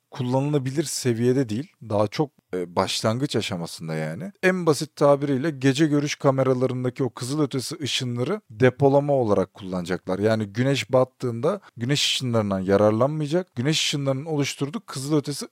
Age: 40-59